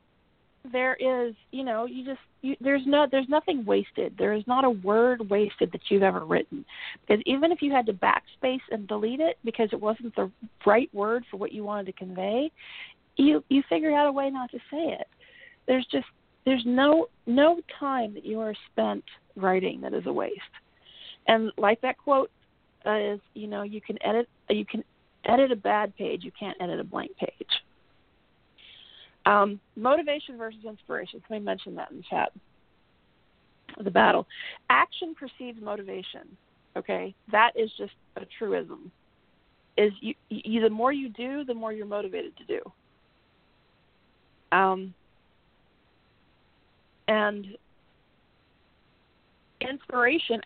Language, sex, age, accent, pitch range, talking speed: English, female, 50-69, American, 215-270 Hz, 160 wpm